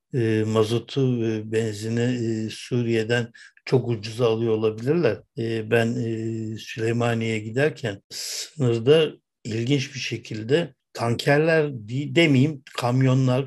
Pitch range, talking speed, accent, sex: 115-130 Hz, 100 wpm, native, male